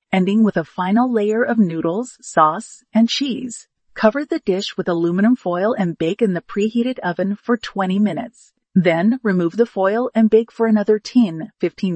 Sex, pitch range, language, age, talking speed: female, 190-240 Hz, English, 40-59, 175 wpm